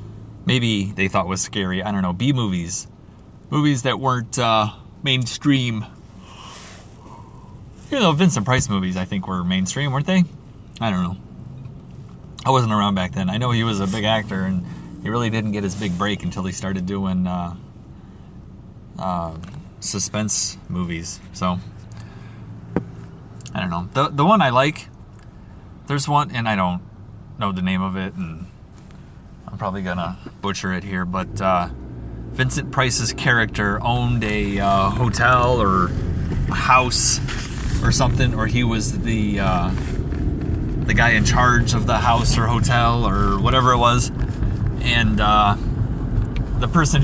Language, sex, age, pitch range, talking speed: English, male, 30-49, 95-120 Hz, 150 wpm